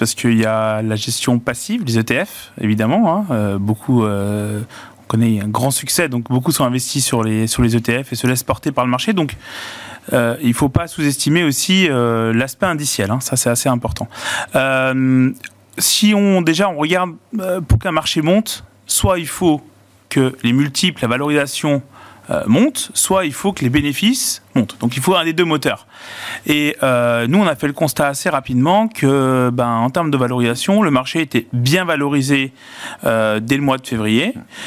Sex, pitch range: male, 120-160 Hz